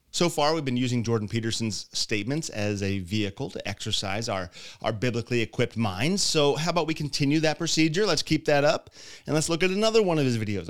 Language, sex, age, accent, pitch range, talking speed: English, male, 30-49, American, 105-150 Hz, 210 wpm